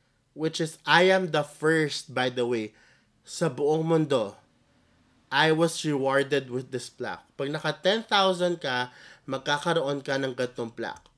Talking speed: 145 wpm